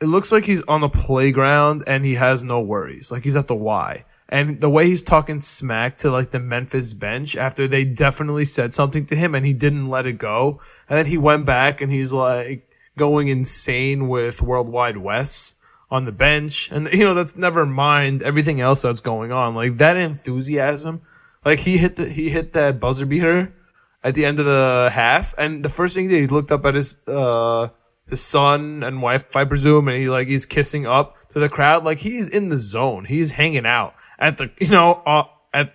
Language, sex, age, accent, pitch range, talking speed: English, male, 20-39, American, 130-150 Hz, 215 wpm